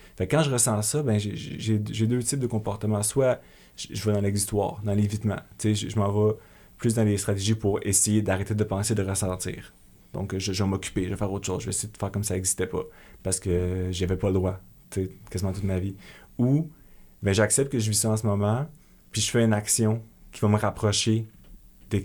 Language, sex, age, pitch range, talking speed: French, male, 30-49, 100-110 Hz, 230 wpm